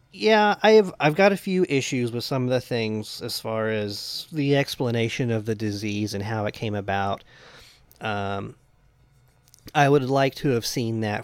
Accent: American